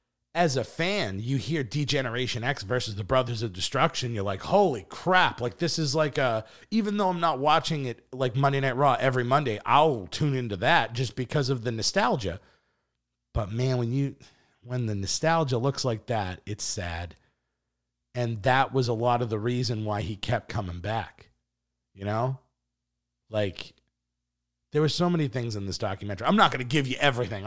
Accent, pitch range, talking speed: American, 85-125 Hz, 185 wpm